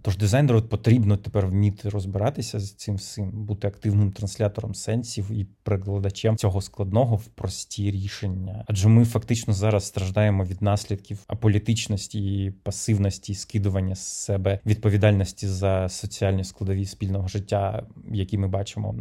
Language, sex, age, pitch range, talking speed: Ukrainian, male, 30-49, 100-110 Hz, 135 wpm